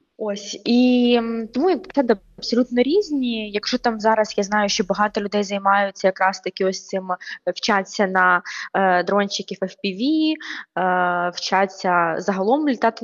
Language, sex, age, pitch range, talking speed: Ukrainian, female, 20-39, 185-220 Hz, 130 wpm